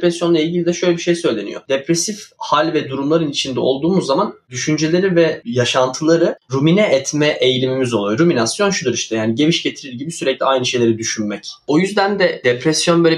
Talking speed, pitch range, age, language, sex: 170 wpm, 120-155 Hz, 10-29, Turkish, male